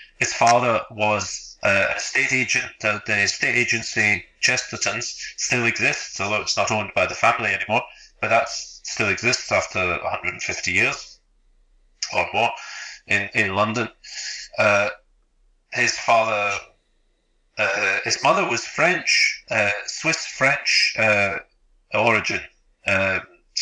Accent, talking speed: British, 130 wpm